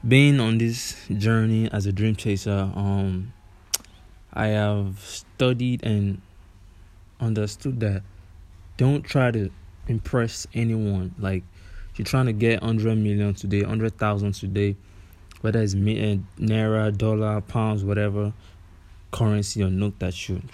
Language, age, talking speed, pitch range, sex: English, 20-39, 120 wpm, 95-115 Hz, male